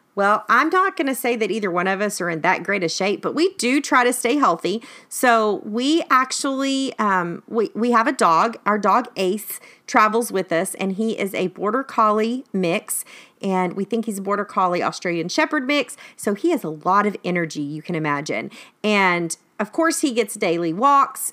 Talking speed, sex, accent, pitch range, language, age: 205 wpm, female, American, 190-260 Hz, English, 40-59